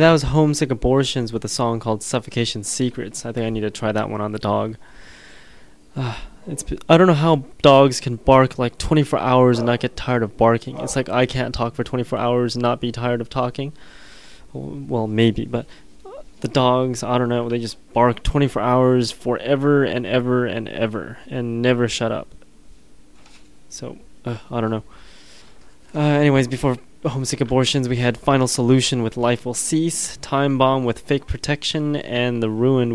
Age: 20-39